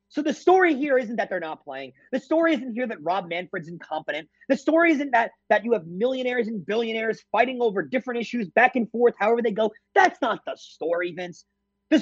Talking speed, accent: 215 wpm, American